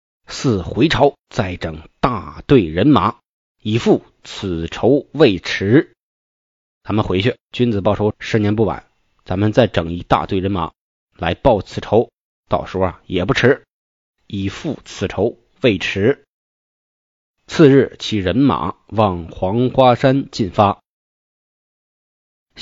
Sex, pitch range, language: male, 95-130 Hz, Chinese